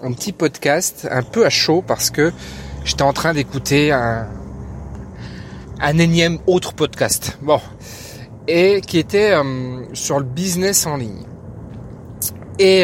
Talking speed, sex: 135 wpm, male